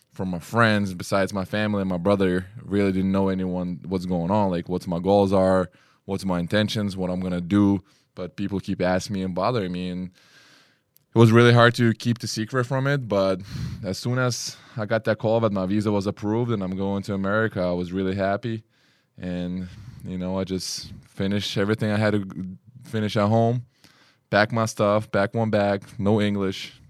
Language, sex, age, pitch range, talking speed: English, male, 20-39, 95-110 Hz, 200 wpm